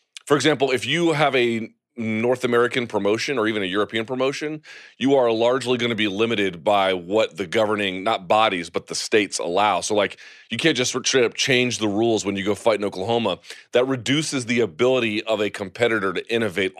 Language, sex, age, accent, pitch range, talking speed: English, male, 30-49, American, 105-130 Hz, 205 wpm